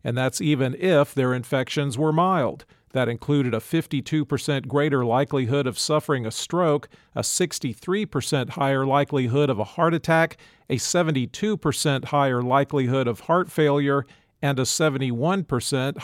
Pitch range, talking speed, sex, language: 130-155 Hz, 135 wpm, male, English